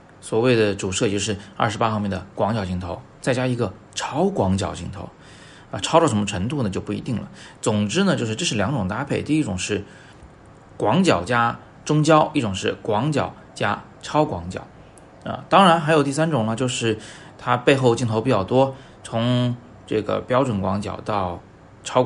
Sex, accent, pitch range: male, native, 100-135 Hz